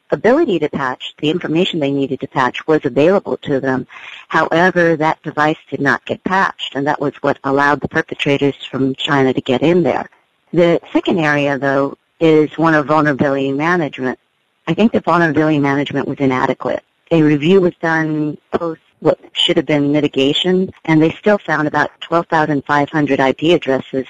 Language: English